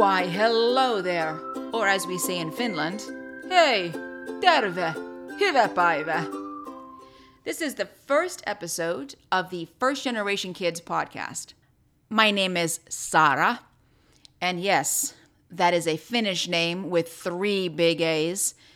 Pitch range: 165-215 Hz